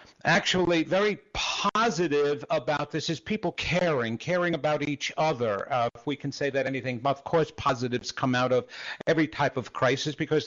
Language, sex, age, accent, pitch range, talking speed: English, male, 50-69, American, 140-180 Hz, 180 wpm